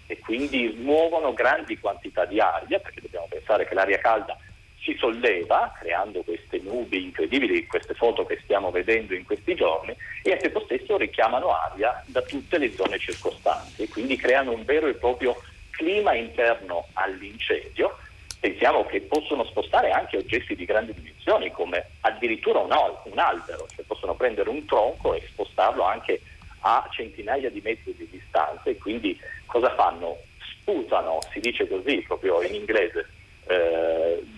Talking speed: 155 wpm